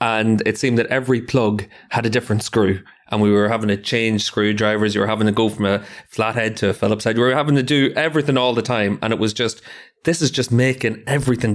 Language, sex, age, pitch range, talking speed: English, male, 30-49, 105-125 Hz, 245 wpm